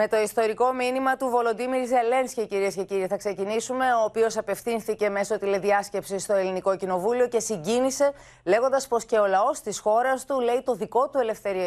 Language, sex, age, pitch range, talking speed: Greek, female, 30-49, 175-235 Hz, 180 wpm